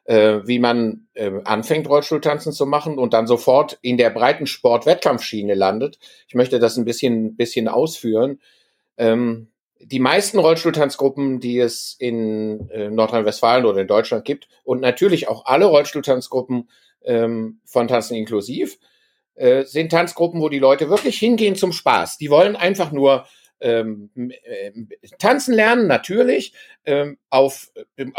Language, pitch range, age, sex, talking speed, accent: German, 120-190 Hz, 50-69, male, 130 wpm, German